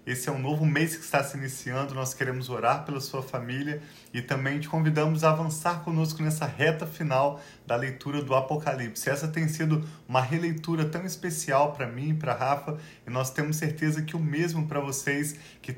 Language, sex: Portuguese, male